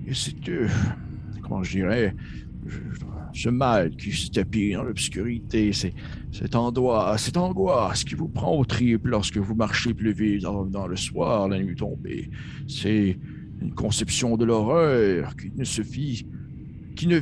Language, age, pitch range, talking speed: French, 60-79, 100-120 Hz, 135 wpm